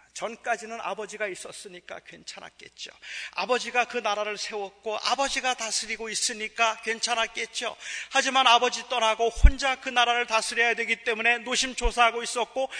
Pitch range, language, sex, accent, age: 210-255 Hz, Korean, male, native, 40-59